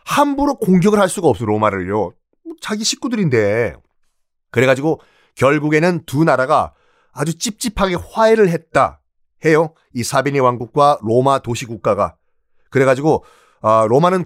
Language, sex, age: Korean, male, 30-49